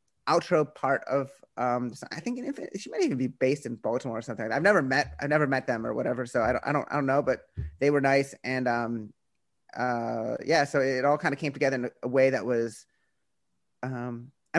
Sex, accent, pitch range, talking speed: male, American, 120-145 Hz, 240 wpm